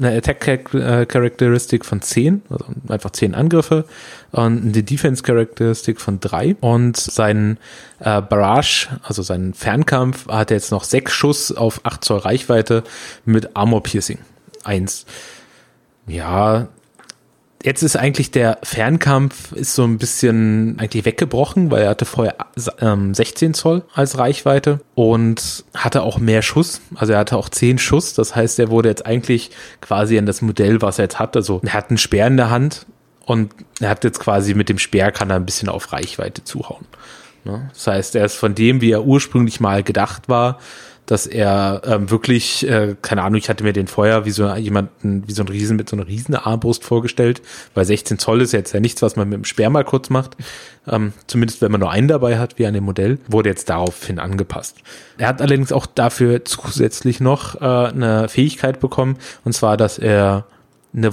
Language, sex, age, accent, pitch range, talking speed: German, male, 30-49, German, 105-130 Hz, 180 wpm